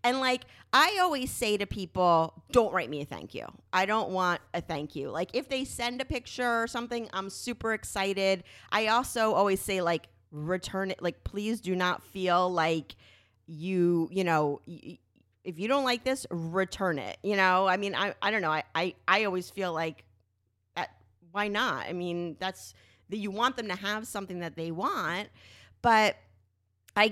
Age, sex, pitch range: 30-49, female, 175-250 Hz